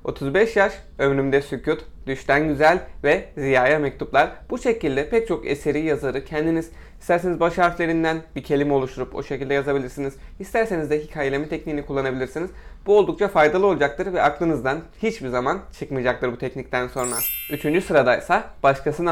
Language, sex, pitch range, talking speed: Turkish, male, 135-175 Hz, 140 wpm